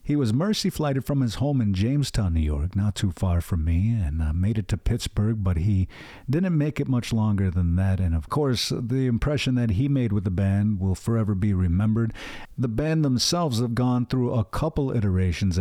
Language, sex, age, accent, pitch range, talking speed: English, male, 50-69, American, 100-135 Hz, 210 wpm